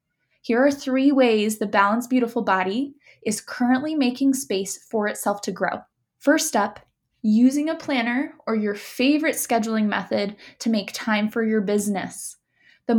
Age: 10-29